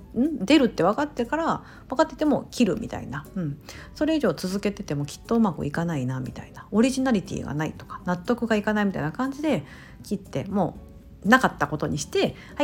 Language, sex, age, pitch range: Japanese, female, 50-69, 165-250 Hz